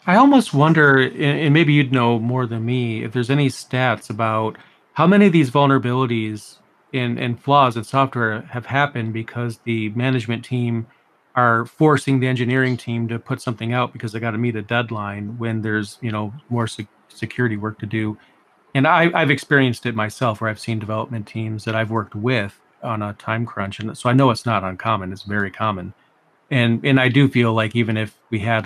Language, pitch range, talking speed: English, 110-135 Hz, 200 wpm